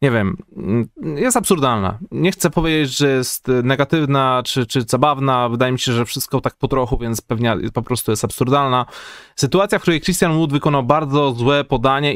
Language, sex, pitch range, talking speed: Polish, male, 110-140 Hz, 180 wpm